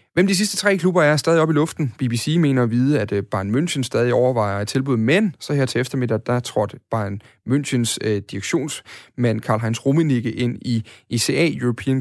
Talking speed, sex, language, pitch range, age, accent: 190 wpm, male, Danish, 115-145 Hz, 30-49, native